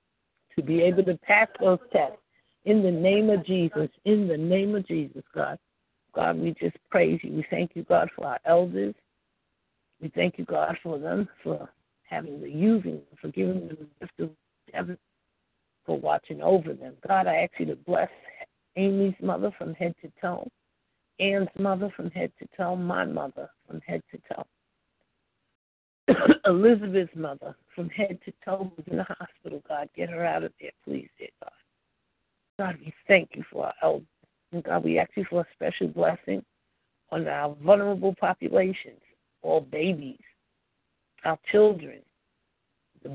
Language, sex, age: English, female, 60-79